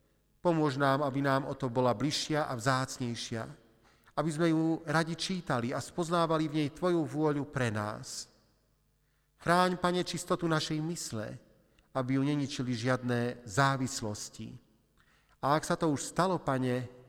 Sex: male